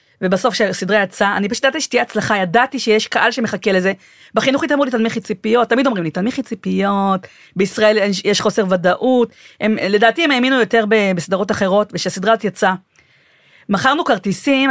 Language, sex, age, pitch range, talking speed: Hebrew, female, 30-49, 200-270 Hz, 165 wpm